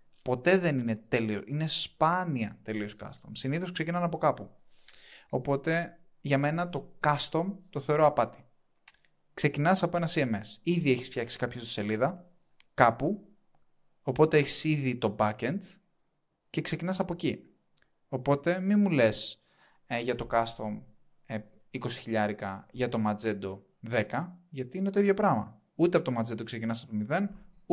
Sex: male